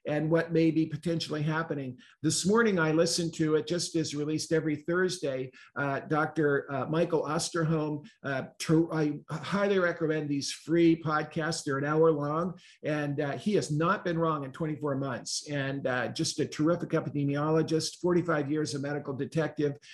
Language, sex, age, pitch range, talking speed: English, male, 50-69, 145-165 Hz, 165 wpm